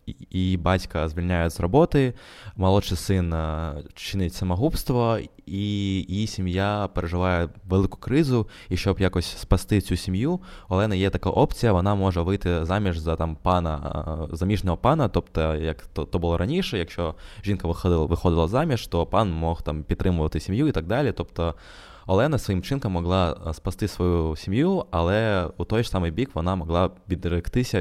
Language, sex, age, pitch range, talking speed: Ukrainian, male, 20-39, 85-105 Hz, 160 wpm